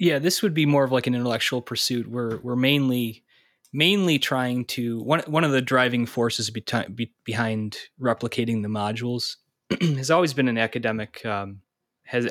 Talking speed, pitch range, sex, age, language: 165 wpm, 110-125 Hz, male, 20-39, English